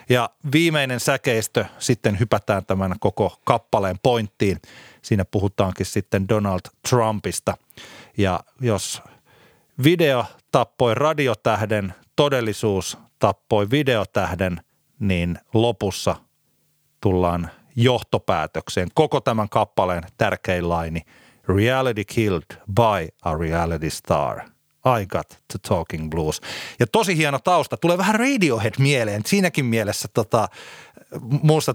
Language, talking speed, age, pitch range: Finnish, 100 wpm, 30-49, 100-125 Hz